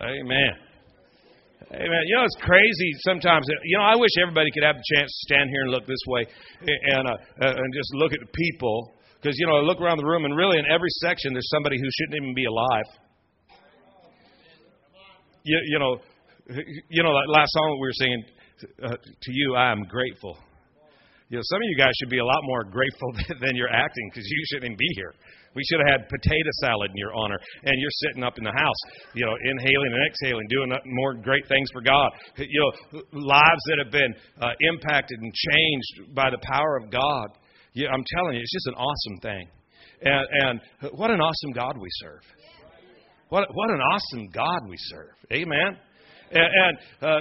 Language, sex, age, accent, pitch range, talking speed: English, male, 50-69, American, 130-170 Hz, 200 wpm